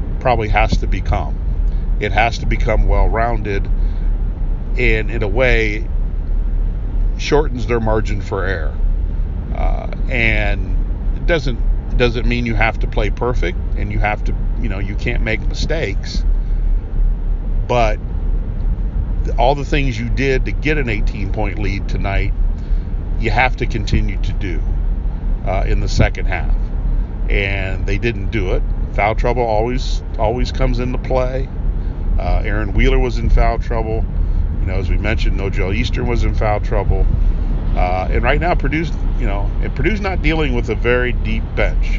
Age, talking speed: 50-69, 155 wpm